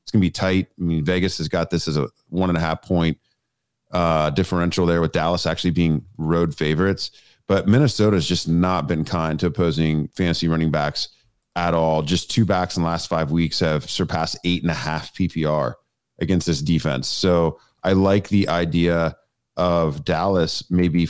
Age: 30-49